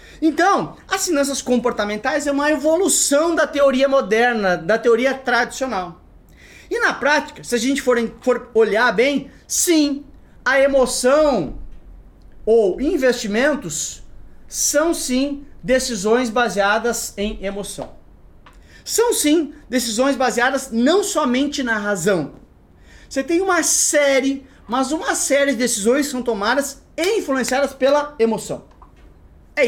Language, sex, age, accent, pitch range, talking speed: Portuguese, male, 30-49, Brazilian, 225-300 Hz, 120 wpm